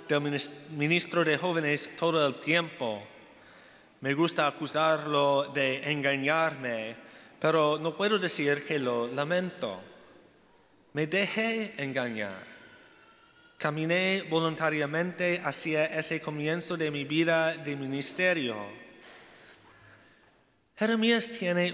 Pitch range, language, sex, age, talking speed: 145-175 Hz, Spanish, male, 30-49, 95 wpm